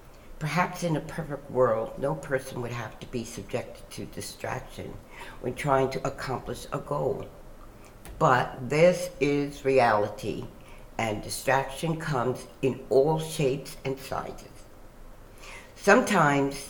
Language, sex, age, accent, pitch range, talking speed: English, female, 60-79, American, 120-155 Hz, 120 wpm